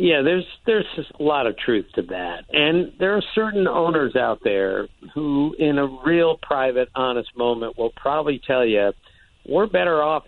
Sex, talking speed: male, 180 wpm